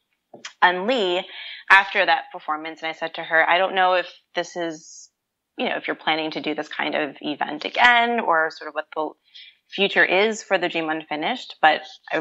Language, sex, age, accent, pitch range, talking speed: English, female, 20-39, American, 155-195 Hz, 200 wpm